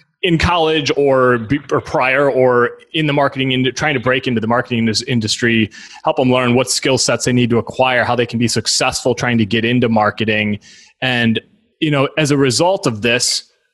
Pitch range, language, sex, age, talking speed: 115-135 Hz, English, male, 20-39, 195 wpm